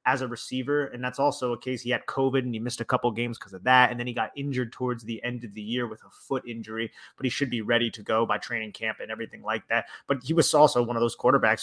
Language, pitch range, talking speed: English, 120-140 Hz, 295 wpm